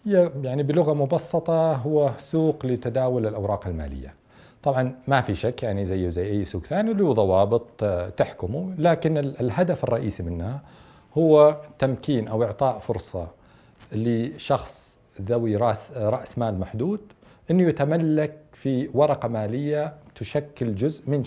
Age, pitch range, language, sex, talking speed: 40-59, 115-165 Hz, Arabic, male, 120 wpm